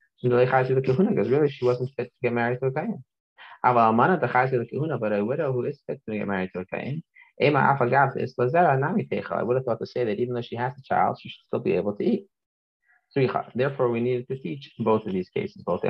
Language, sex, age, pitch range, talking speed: English, male, 30-49, 105-130 Hz, 200 wpm